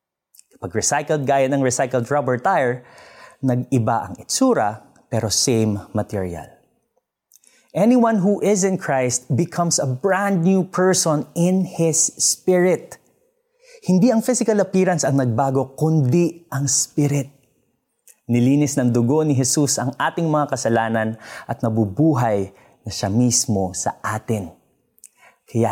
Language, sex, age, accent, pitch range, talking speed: Filipino, male, 20-39, native, 110-170 Hz, 120 wpm